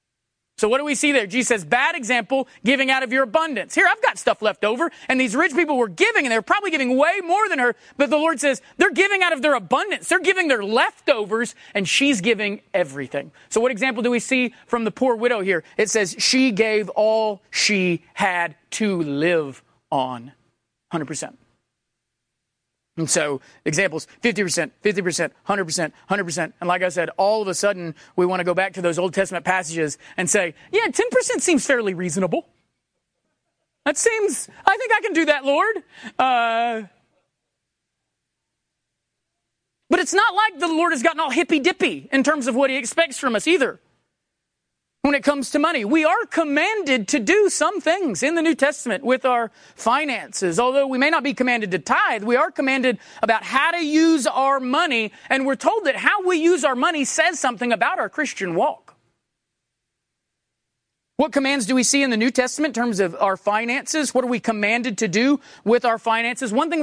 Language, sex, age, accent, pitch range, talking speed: English, male, 30-49, American, 205-305 Hz, 190 wpm